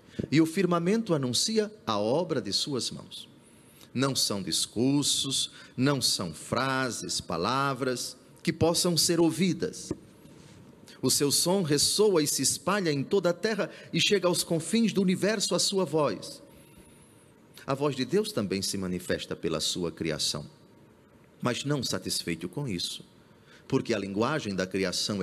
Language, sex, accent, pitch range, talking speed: Portuguese, male, Brazilian, 115-165 Hz, 145 wpm